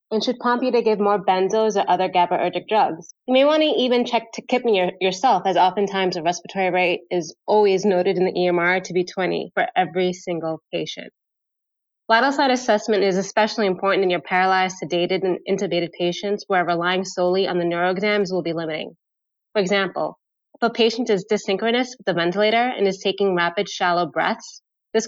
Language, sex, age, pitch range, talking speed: English, female, 20-39, 180-225 Hz, 185 wpm